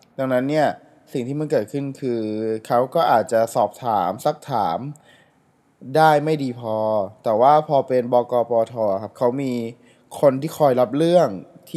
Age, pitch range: 20-39, 115-150 Hz